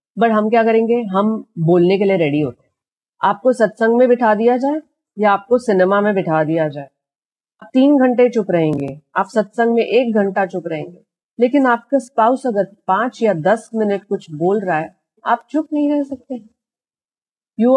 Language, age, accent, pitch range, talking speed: Hindi, 40-59, native, 180-235 Hz, 180 wpm